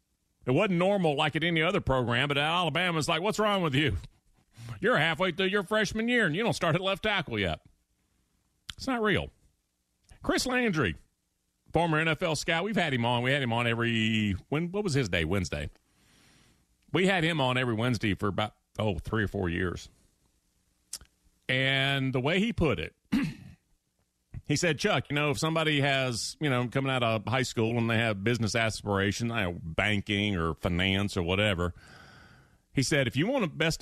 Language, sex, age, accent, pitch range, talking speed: English, male, 40-59, American, 105-150 Hz, 185 wpm